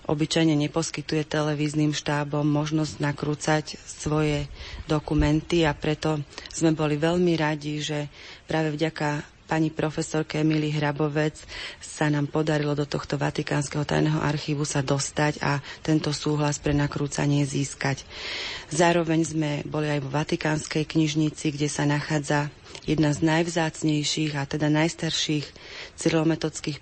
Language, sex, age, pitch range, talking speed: Slovak, female, 30-49, 145-160 Hz, 120 wpm